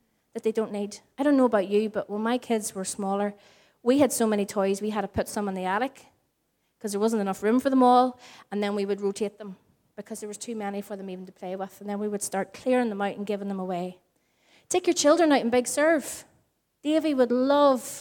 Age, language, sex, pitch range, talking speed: 30-49, English, female, 200-250 Hz, 250 wpm